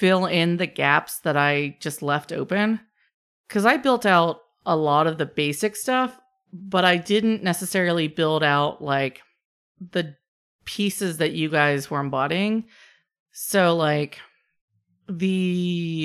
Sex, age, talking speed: female, 30-49, 135 wpm